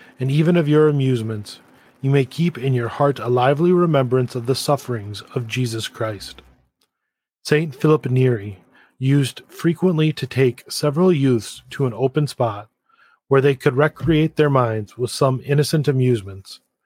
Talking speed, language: 155 wpm, English